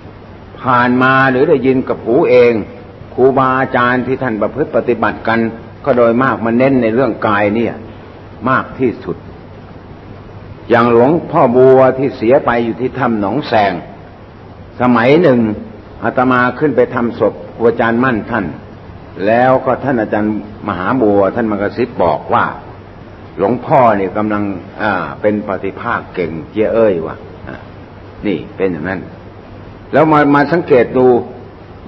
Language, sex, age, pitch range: Thai, male, 60-79, 105-125 Hz